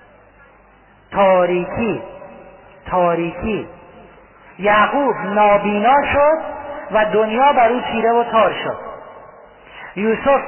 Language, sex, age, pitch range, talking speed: Persian, male, 40-59, 195-245 Hz, 80 wpm